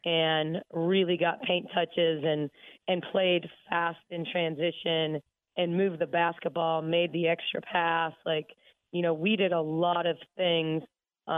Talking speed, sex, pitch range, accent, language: 150 wpm, female, 160-180 Hz, American, English